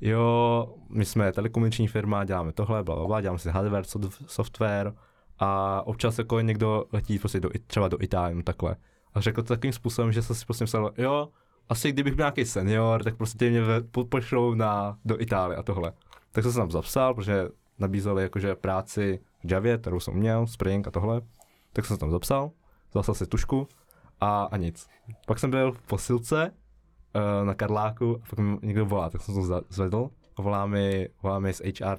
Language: Czech